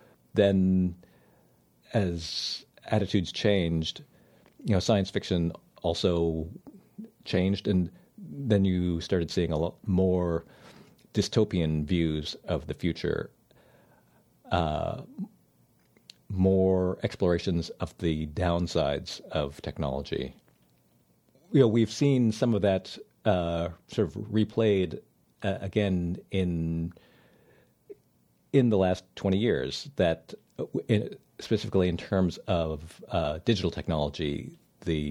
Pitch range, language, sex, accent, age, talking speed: 80-95 Hz, English, male, American, 50-69, 105 wpm